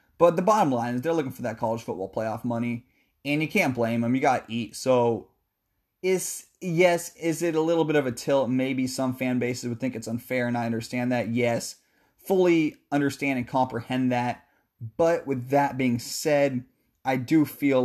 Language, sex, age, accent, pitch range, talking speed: English, male, 20-39, American, 120-160 Hz, 200 wpm